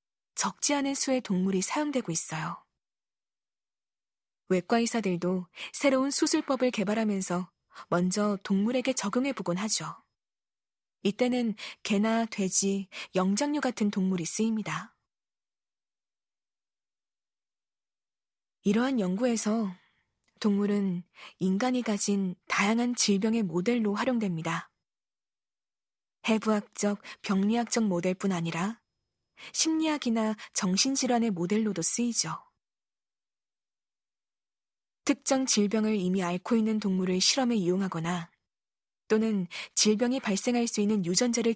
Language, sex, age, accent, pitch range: Korean, female, 20-39, native, 190-240 Hz